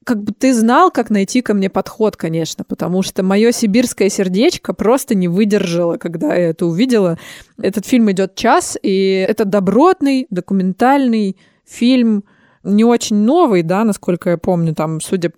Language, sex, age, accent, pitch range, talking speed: Russian, female, 20-39, native, 175-220 Hz, 155 wpm